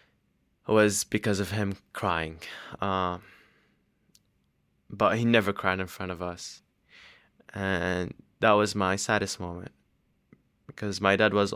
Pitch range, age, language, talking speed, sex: 95-115 Hz, 20-39, English, 130 wpm, male